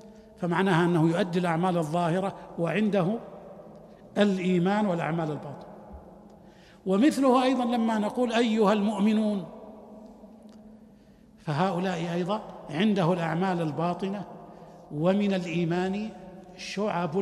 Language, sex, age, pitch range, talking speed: Arabic, male, 60-79, 175-225 Hz, 80 wpm